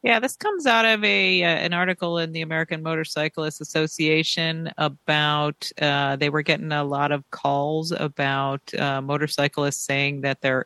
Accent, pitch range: American, 135-155 Hz